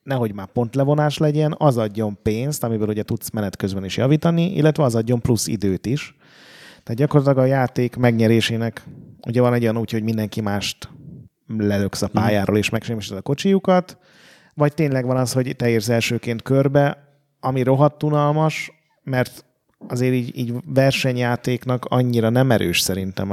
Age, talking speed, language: 30-49, 155 wpm, Hungarian